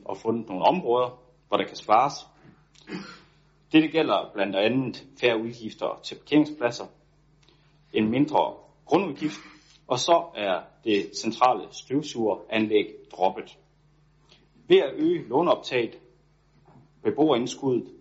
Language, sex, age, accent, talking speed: Danish, male, 30-49, native, 105 wpm